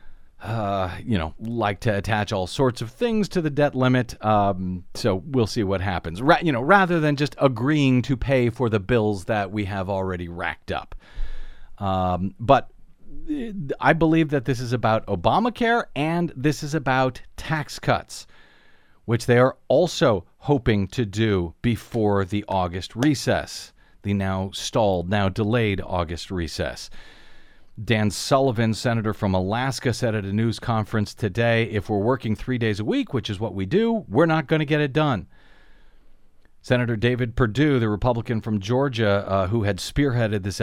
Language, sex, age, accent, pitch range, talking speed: English, male, 40-59, American, 100-135 Hz, 165 wpm